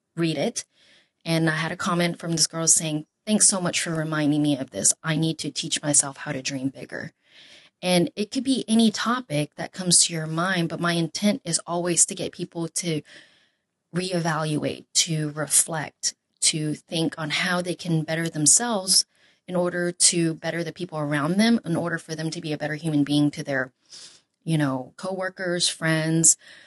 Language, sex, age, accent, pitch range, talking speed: English, female, 20-39, American, 155-180 Hz, 185 wpm